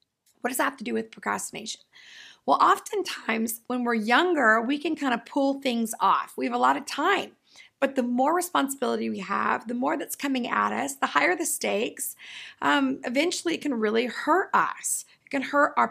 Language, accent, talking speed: English, American, 200 wpm